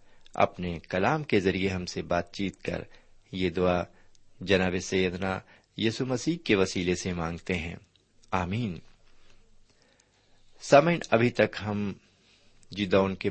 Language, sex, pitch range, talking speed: Urdu, male, 95-115 Hz, 115 wpm